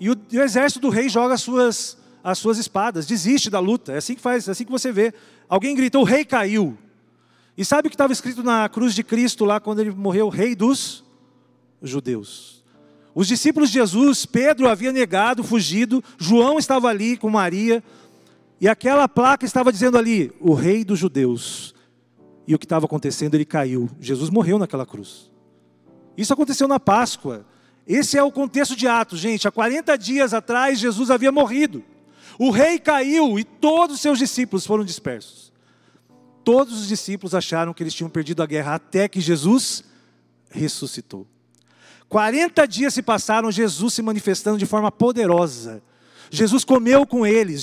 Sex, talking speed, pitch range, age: male, 175 wpm, 175-255 Hz, 40-59